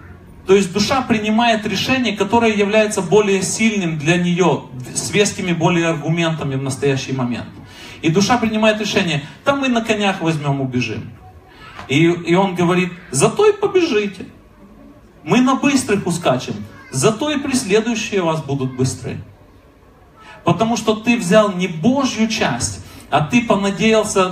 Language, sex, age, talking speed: Russian, male, 30-49, 135 wpm